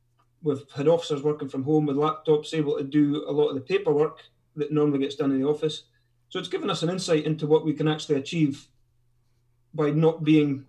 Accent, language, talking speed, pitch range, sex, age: British, English, 215 wpm, 135-155 Hz, male, 30-49